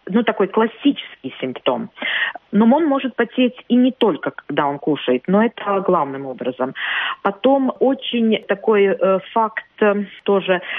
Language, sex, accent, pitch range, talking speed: Russian, female, native, 180-225 Hz, 135 wpm